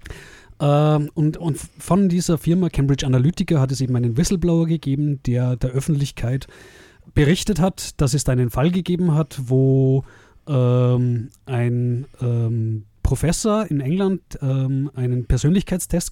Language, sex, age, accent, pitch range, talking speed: German, male, 30-49, German, 125-165 Hz, 125 wpm